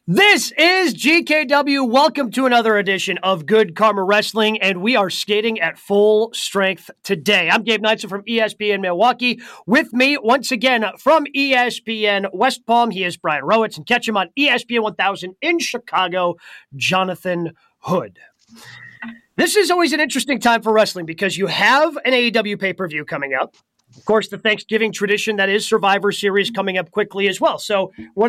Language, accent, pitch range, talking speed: English, American, 190-245 Hz, 170 wpm